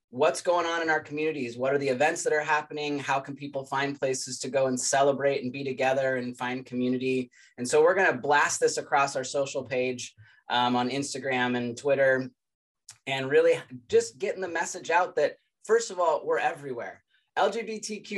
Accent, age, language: American, 20-39, English